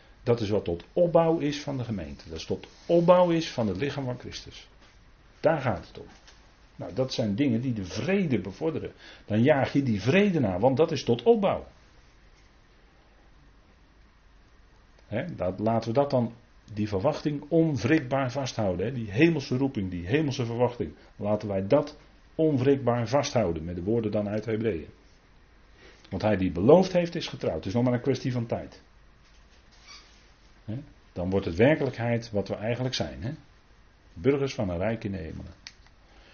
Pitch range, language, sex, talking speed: 95-135 Hz, Dutch, male, 160 wpm